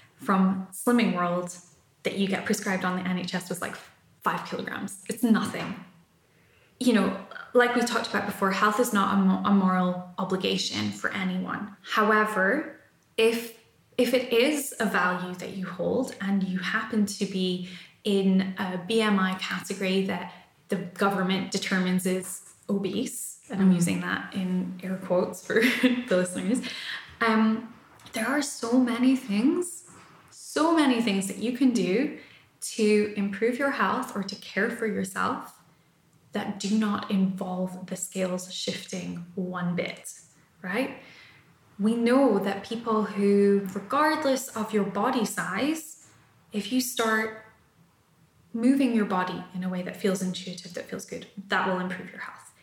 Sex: female